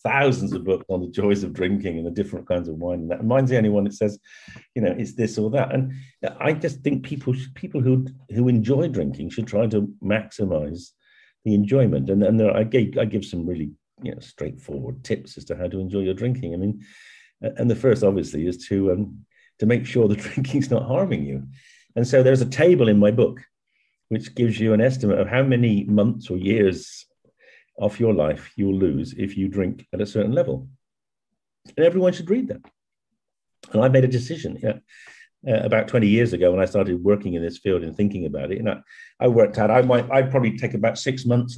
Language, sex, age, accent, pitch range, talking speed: Spanish, male, 50-69, British, 100-130 Hz, 225 wpm